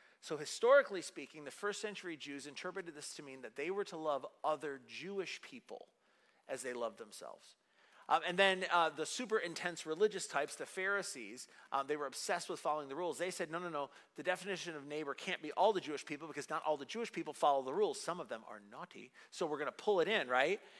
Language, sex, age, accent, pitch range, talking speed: English, male, 40-59, American, 150-205 Hz, 230 wpm